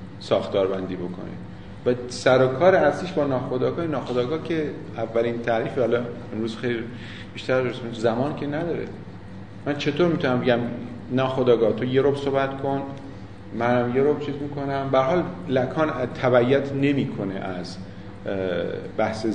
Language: Persian